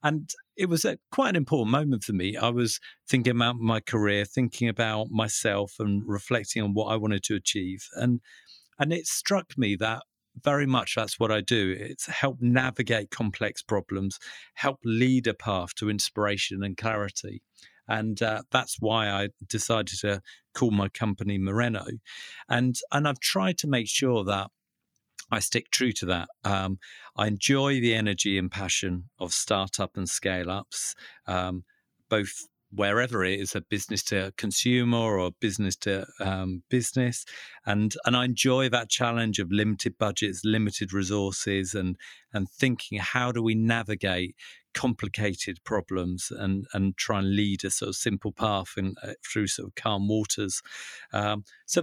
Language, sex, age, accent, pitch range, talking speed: English, male, 50-69, British, 100-120 Hz, 165 wpm